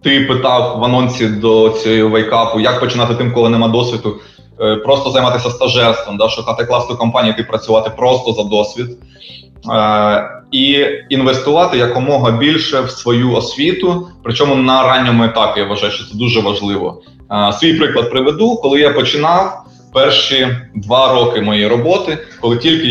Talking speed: 145 wpm